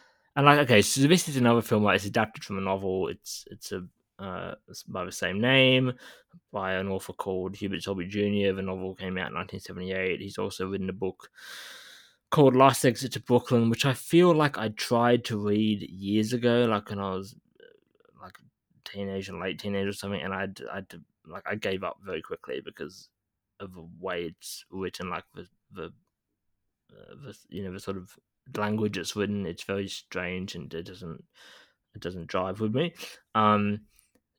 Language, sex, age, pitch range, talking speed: English, male, 20-39, 100-130 Hz, 195 wpm